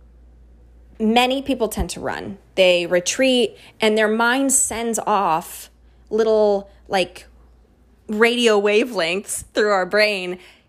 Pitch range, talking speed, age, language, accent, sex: 180-260 Hz, 105 wpm, 20-39, English, American, female